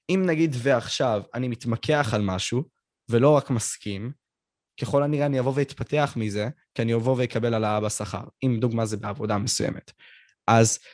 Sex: male